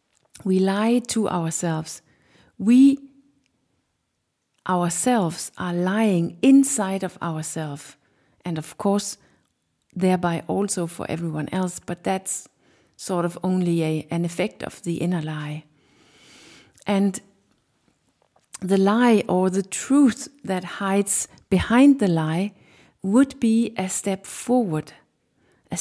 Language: English